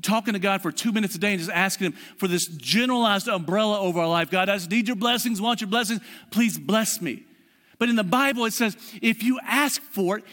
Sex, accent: male, American